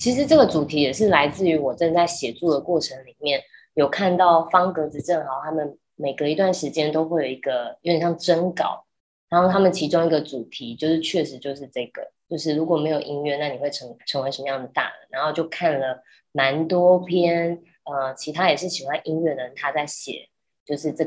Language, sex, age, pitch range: Chinese, female, 20-39, 140-175 Hz